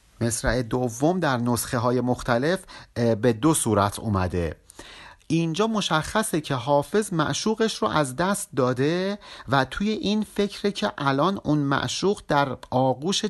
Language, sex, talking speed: Persian, male, 130 wpm